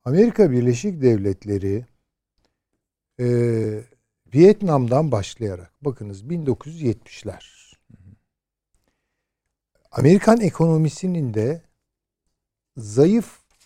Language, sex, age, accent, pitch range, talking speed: Turkish, male, 60-79, native, 110-160 Hz, 50 wpm